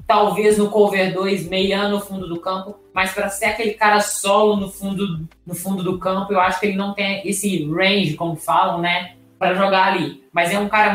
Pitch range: 180-210 Hz